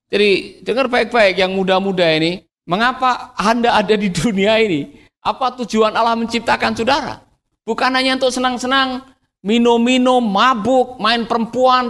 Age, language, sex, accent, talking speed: 50-69, Indonesian, male, native, 125 wpm